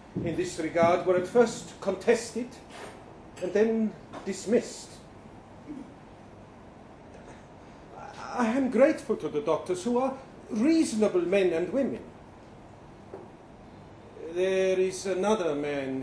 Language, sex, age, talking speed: English, male, 50-69, 95 wpm